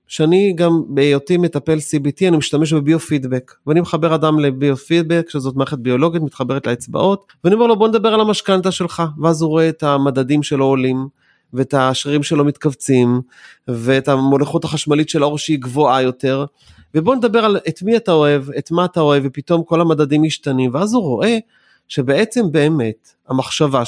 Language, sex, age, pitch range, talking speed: Hebrew, male, 30-49, 140-185 Hz, 165 wpm